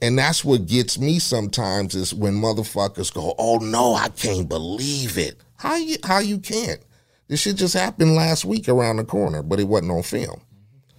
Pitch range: 105-160 Hz